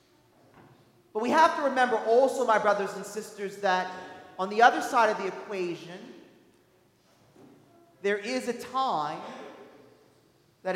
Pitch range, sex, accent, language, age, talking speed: 190-220 Hz, male, American, English, 40-59, 130 wpm